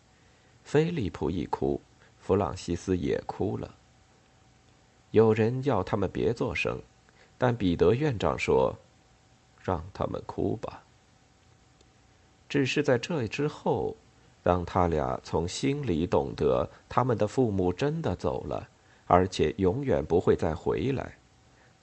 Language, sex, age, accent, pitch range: Chinese, male, 50-69, native, 95-125 Hz